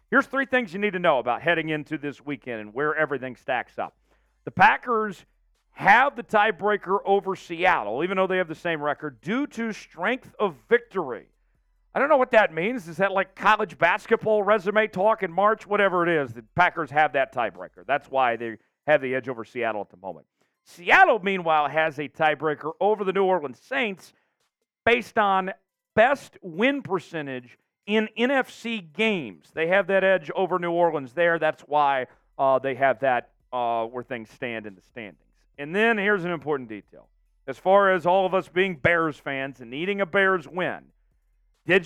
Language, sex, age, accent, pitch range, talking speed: English, male, 40-59, American, 140-205 Hz, 185 wpm